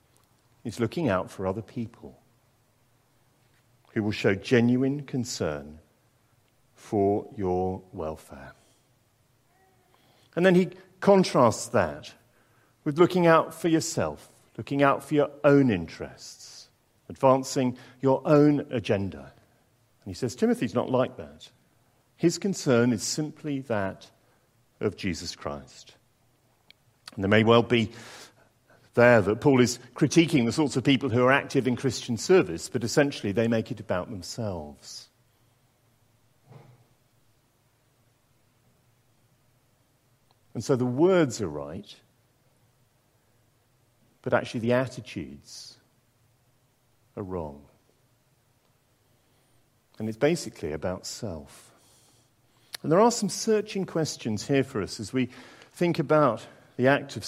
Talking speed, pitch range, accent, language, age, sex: 115 wpm, 115-135 Hz, British, English, 50-69, male